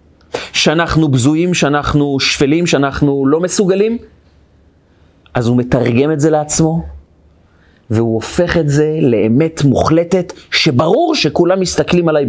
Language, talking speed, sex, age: Hebrew, 110 wpm, male, 30-49